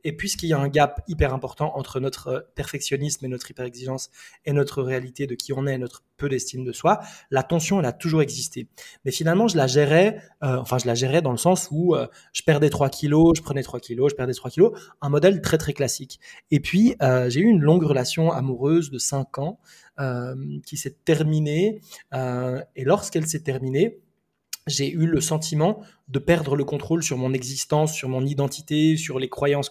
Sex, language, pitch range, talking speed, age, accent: male, French, 135-170 Hz, 210 wpm, 20-39, French